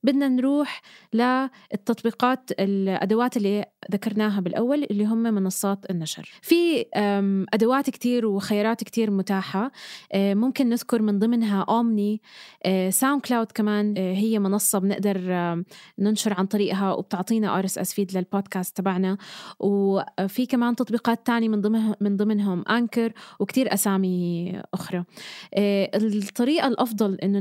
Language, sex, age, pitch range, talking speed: Arabic, female, 20-39, 195-235 Hz, 110 wpm